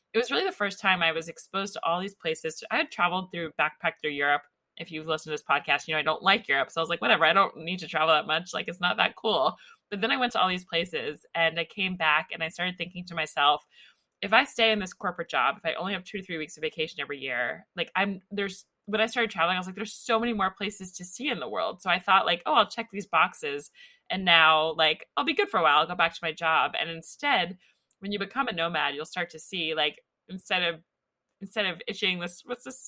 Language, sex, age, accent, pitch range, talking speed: English, female, 20-39, American, 160-210 Hz, 275 wpm